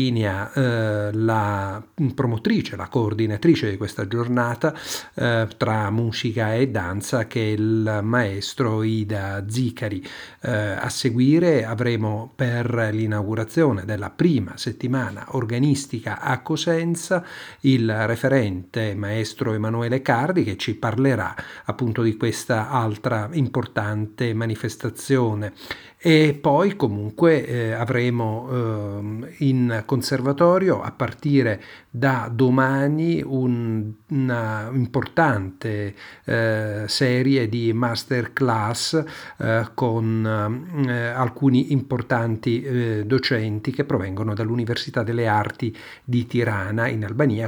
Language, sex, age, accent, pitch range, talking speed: Italian, male, 50-69, native, 110-130 Hz, 100 wpm